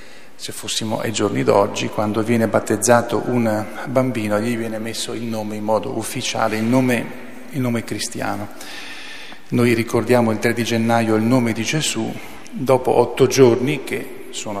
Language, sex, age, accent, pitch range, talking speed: Italian, male, 40-59, native, 110-125 Hz, 155 wpm